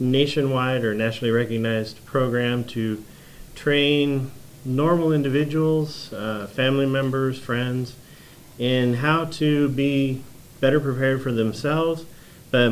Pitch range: 120-140 Hz